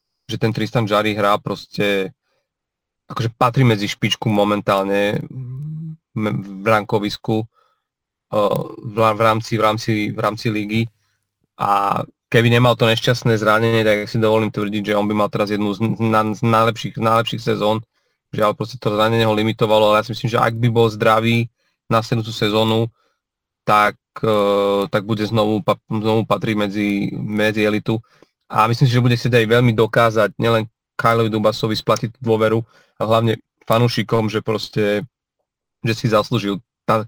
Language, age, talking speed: Slovak, 30-49, 150 wpm